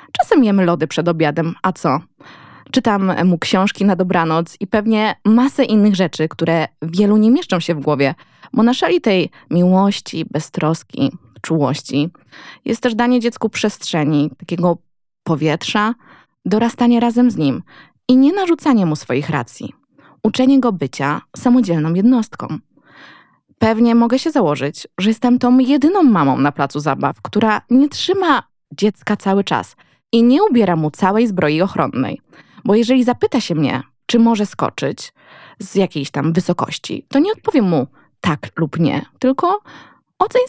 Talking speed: 145 wpm